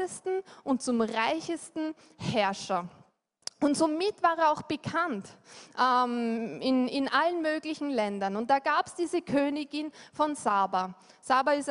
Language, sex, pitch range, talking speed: German, female, 235-325 Hz, 135 wpm